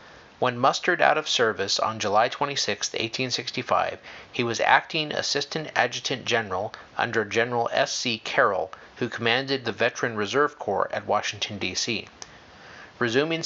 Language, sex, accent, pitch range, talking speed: English, male, American, 110-135 Hz, 130 wpm